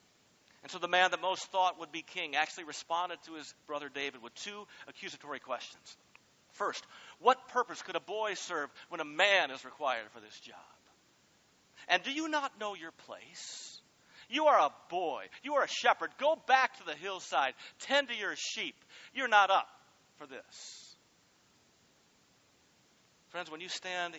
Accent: American